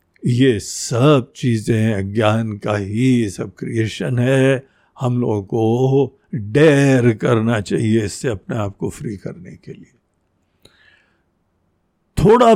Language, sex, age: Hindi, male, 60-79